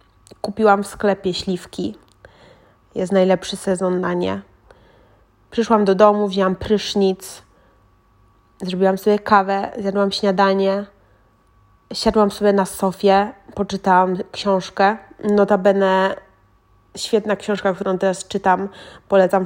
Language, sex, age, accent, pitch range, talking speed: Polish, female, 20-39, native, 185-210 Hz, 100 wpm